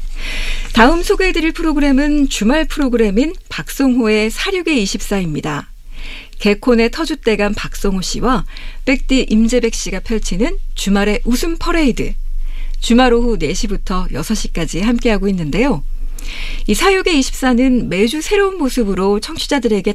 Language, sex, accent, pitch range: Korean, female, native, 200-270 Hz